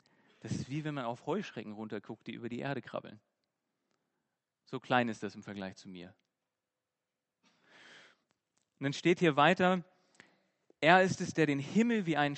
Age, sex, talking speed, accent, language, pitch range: 40-59, male, 165 wpm, German, German, 125-160 Hz